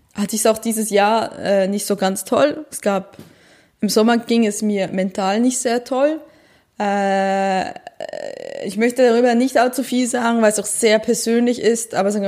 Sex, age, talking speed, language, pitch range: female, 20-39, 185 wpm, German, 200-235 Hz